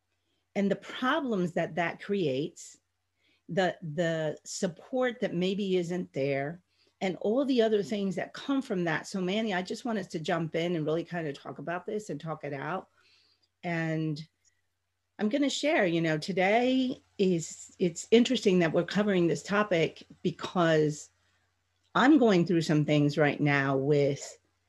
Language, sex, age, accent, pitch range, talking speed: English, female, 40-59, American, 150-195 Hz, 160 wpm